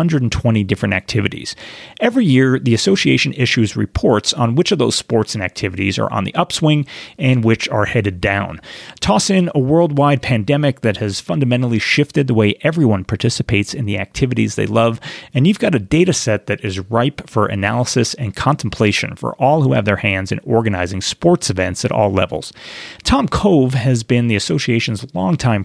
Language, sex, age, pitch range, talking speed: English, male, 30-49, 105-145 Hz, 180 wpm